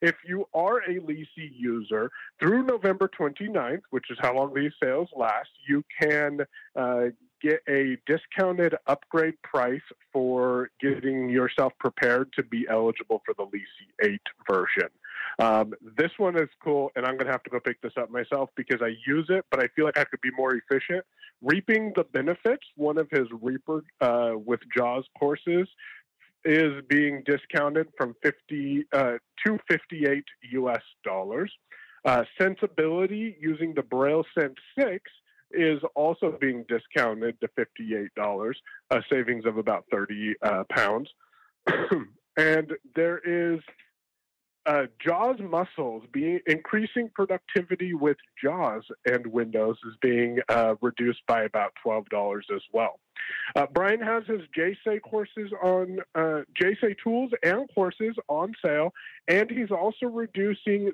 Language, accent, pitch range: English, American, 130-190 Hz